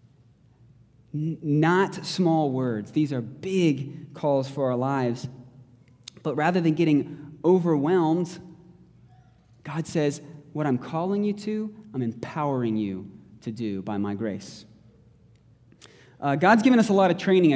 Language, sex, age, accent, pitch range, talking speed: English, male, 20-39, American, 125-165 Hz, 130 wpm